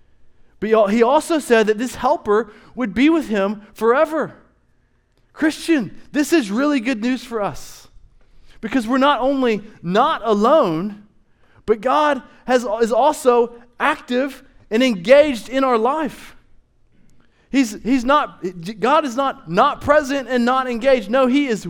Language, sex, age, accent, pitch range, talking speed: English, male, 20-39, American, 180-255 Hz, 130 wpm